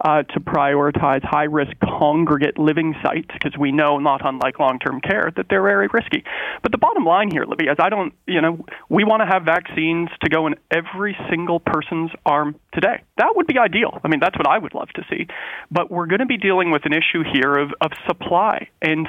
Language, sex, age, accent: English, male, 30-49, American